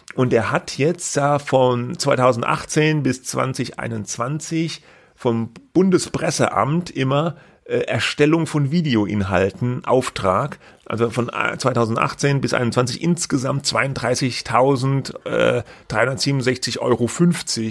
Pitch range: 115-150 Hz